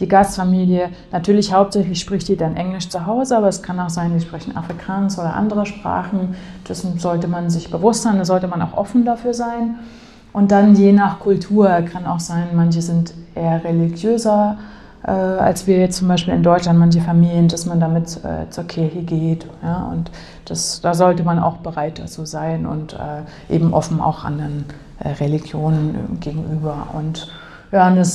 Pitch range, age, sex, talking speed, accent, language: 165-195 Hz, 30-49, female, 180 wpm, German, German